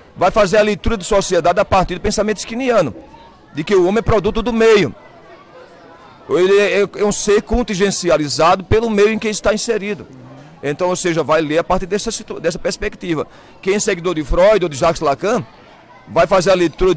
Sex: male